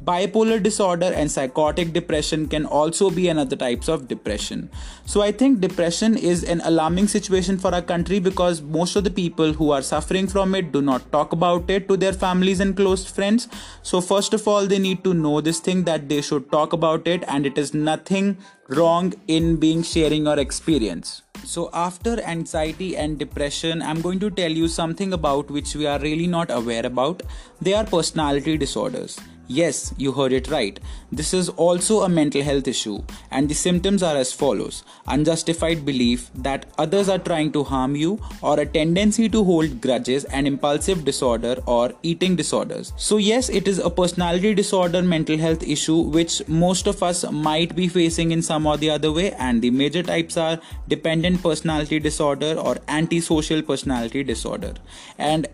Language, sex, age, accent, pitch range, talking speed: English, male, 20-39, Indian, 150-180 Hz, 180 wpm